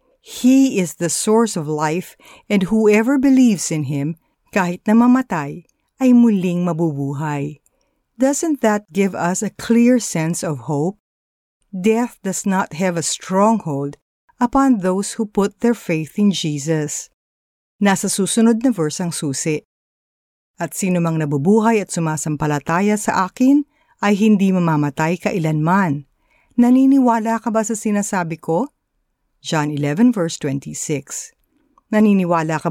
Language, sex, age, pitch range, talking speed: Filipino, female, 50-69, 155-225 Hz, 125 wpm